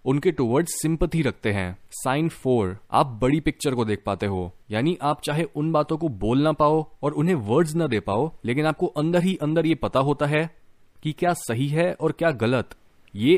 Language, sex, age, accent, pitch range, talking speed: Hindi, male, 20-39, native, 125-165 Hz, 200 wpm